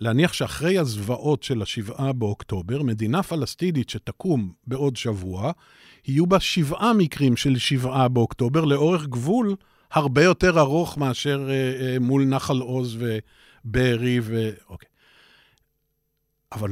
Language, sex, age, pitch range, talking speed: Hebrew, male, 50-69, 120-155 Hz, 120 wpm